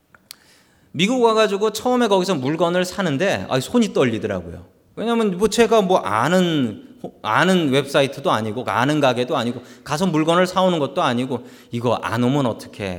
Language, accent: Korean, native